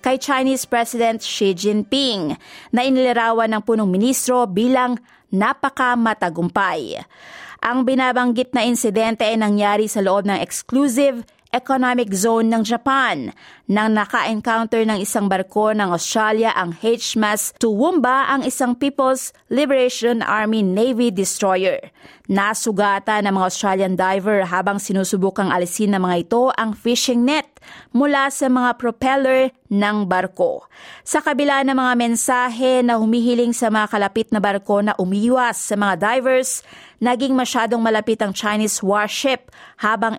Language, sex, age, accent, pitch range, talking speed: Filipino, female, 20-39, native, 205-255 Hz, 130 wpm